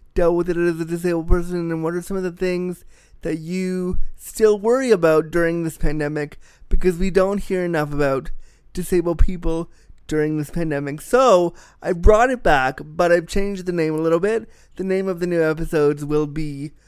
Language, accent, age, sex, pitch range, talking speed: English, American, 20-39, male, 150-180 Hz, 190 wpm